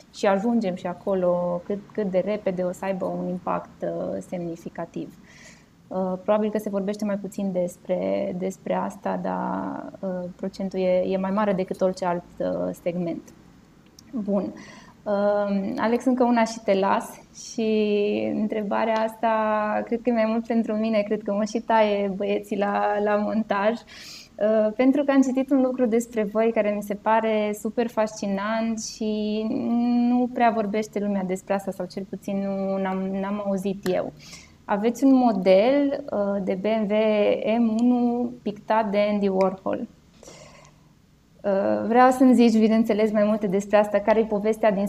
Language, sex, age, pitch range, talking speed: Romanian, female, 20-39, 195-225 Hz, 145 wpm